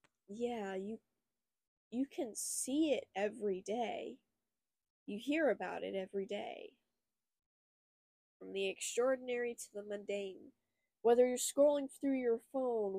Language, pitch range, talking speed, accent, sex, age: English, 200-265 Hz, 120 wpm, American, female, 10-29